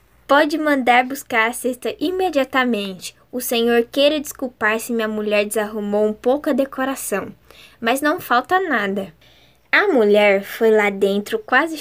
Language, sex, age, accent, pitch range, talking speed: Portuguese, female, 10-29, Brazilian, 215-265 Hz, 140 wpm